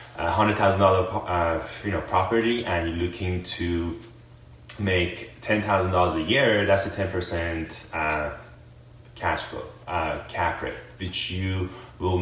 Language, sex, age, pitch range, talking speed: English, male, 20-39, 85-110 Hz, 115 wpm